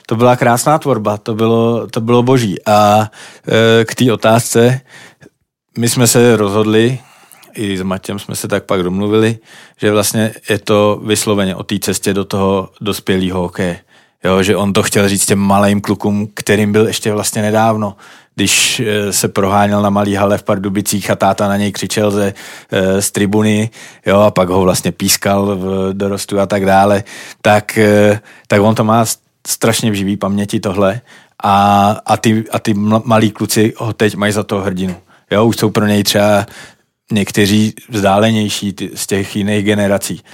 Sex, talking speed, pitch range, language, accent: male, 170 wpm, 95-110 Hz, Czech, native